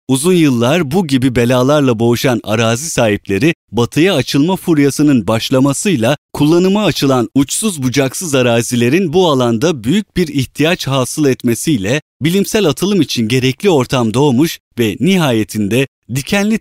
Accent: native